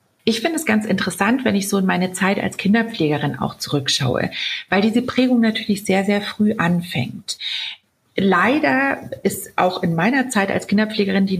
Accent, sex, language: German, female, German